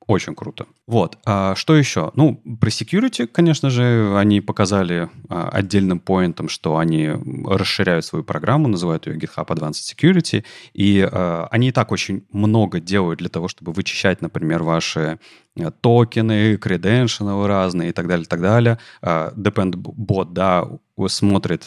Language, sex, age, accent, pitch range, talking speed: Russian, male, 30-49, native, 90-115 Hz, 135 wpm